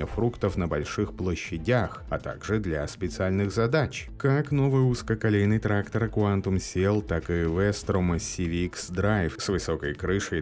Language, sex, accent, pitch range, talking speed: Russian, male, native, 85-110 Hz, 130 wpm